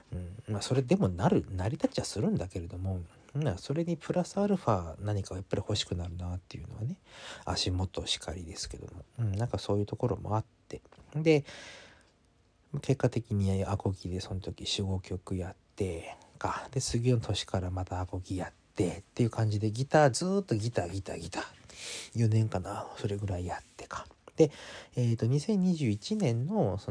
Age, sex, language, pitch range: 40-59, male, Japanese, 95-125 Hz